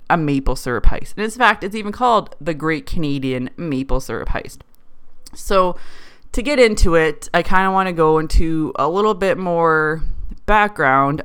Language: English